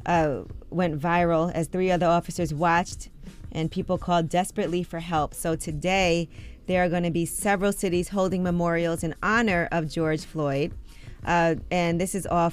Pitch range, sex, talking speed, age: 160-180 Hz, female, 170 wpm, 20-39